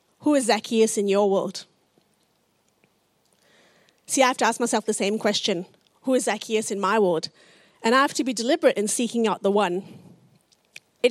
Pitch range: 210-255 Hz